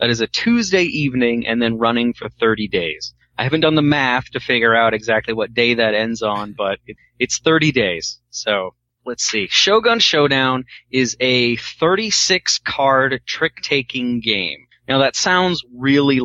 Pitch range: 110-135 Hz